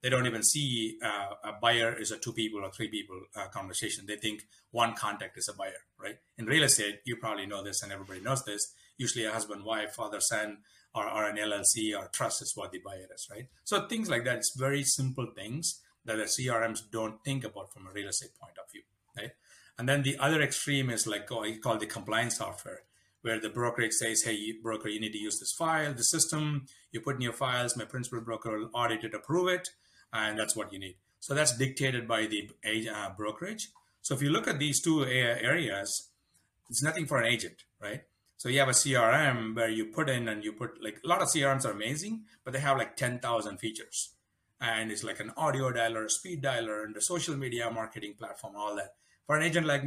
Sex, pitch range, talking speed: male, 110-135 Hz, 225 wpm